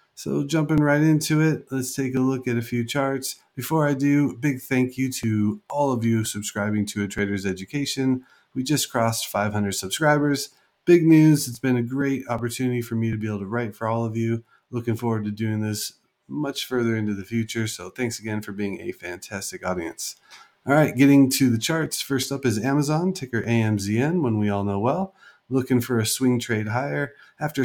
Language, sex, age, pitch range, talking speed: English, male, 30-49, 110-135 Hz, 200 wpm